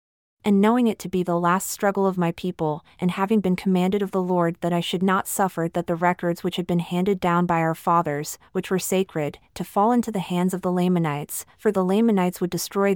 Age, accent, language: 30-49, American, English